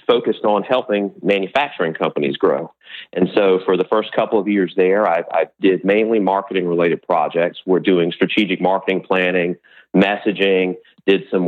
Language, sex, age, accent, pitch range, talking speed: English, male, 40-59, American, 95-110 Hz, 150 wpm